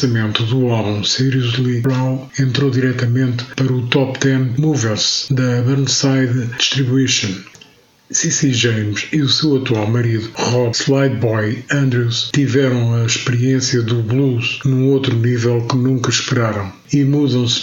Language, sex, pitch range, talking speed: Portuguese, male, 115-130 Hz, 135 wpm